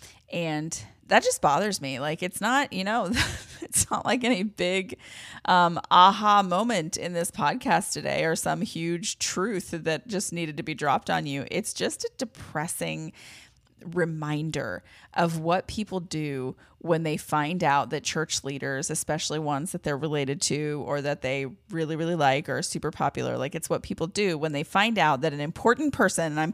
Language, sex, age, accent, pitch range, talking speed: English, female, 30-49, American, 150-190 Hz, 185 wpm